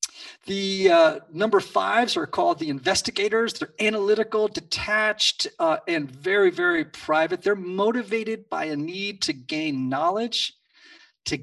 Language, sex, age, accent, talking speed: English, male, 40-59, American, 130 wpm